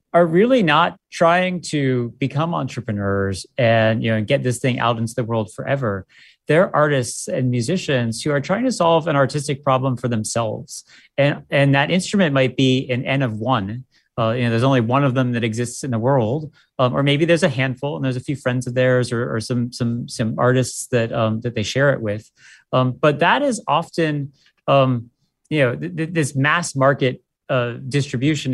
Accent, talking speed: American, 200 wpm